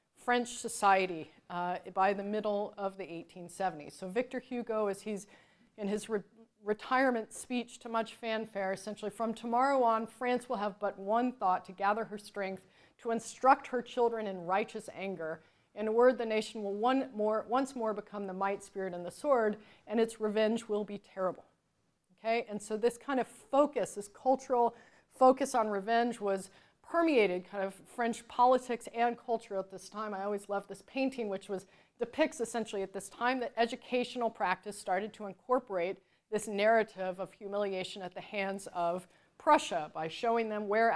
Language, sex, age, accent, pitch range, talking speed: English, female, 30-49, American, 195-240 Hz, 175 wpm